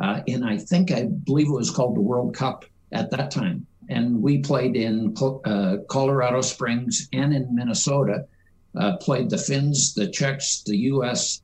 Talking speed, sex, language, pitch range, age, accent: 175 wpm, male, English, 110-175 Hz, 60-79, American